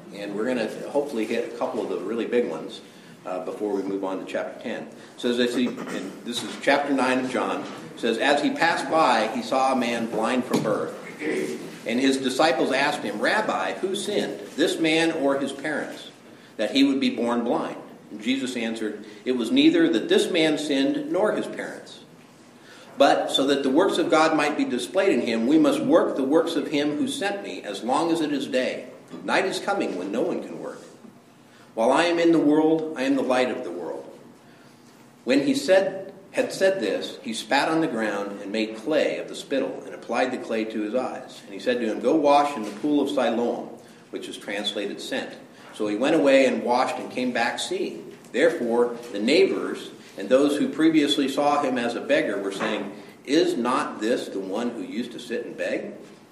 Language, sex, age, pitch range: English, male, 50-69, 120-165 Hz